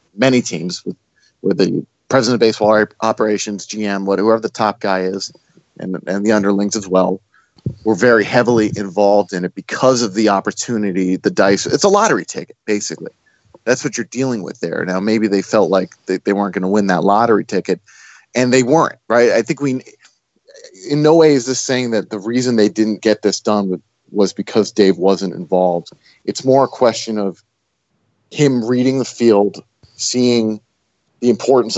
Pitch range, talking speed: 95-115 Hz, 180 wpm